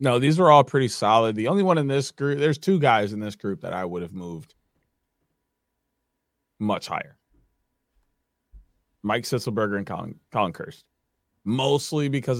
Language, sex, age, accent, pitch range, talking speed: English, male, 20-39, American, 100-125 Hz, 160 wpm